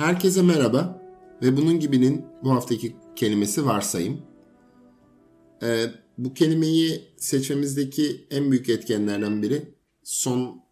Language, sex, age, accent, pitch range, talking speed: Turkish, male, 50-69, native, 105-140 Hz, 100 wpm